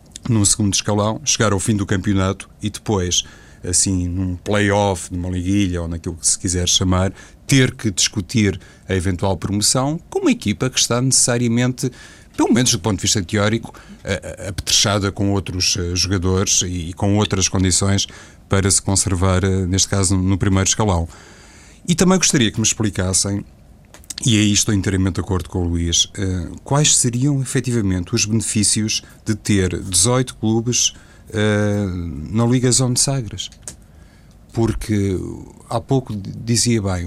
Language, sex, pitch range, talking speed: Portuguese, male, 95-115 Hz, 145 wpm